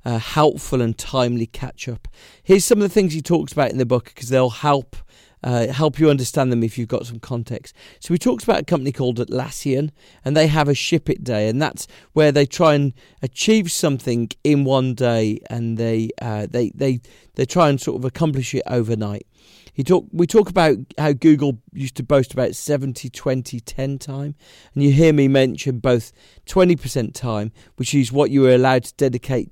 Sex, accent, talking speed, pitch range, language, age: male, British, 195 wpm, 120-145 Hz, English, 40-59